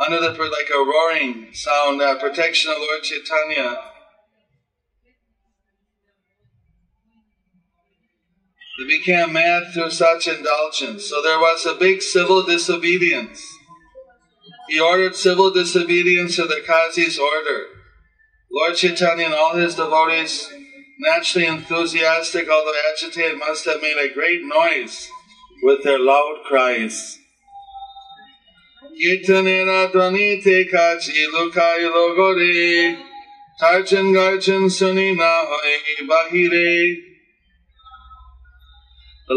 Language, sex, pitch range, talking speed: English, male, 155-190 Hz, 80 wpm